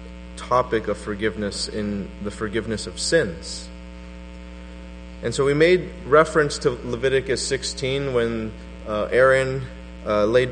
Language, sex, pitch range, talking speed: English, male, 100-125 Hz, 120 wpm